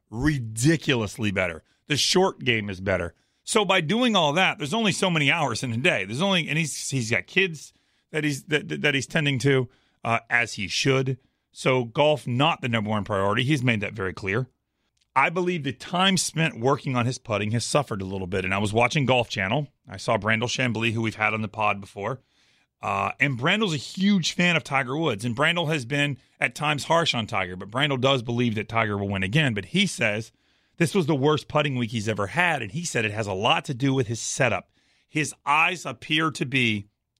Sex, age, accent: male, 30-49, American